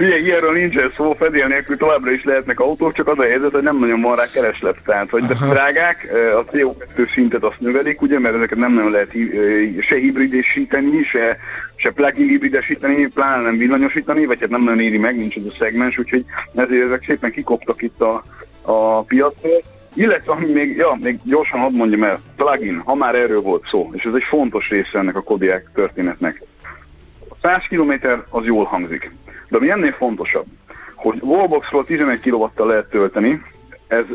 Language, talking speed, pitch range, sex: Hungarian, 180 wpm, 115-150 Hz, male